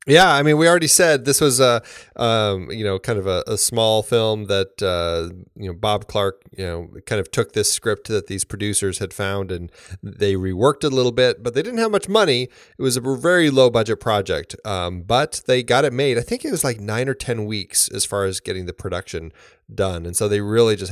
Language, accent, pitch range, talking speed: English, American, 95-130 Hz, 240 wpm